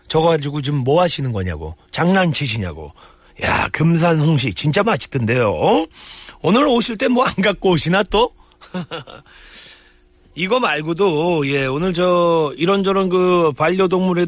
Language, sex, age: Korean, male, 40-59